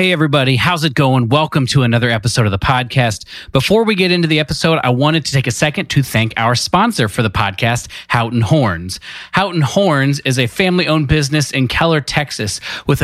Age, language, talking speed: 30-49, English, 200 wpm